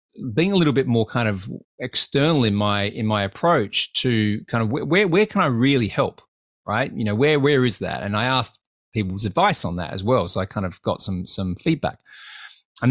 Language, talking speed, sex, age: English, 220 wpm, male, 30-49